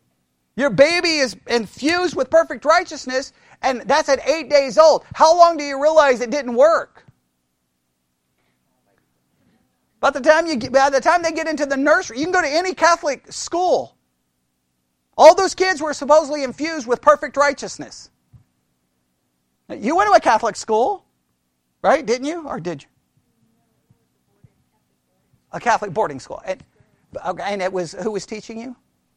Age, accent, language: 40-59, American, English